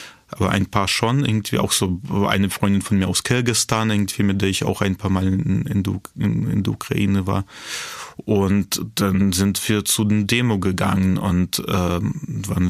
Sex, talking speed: male, 180 wpm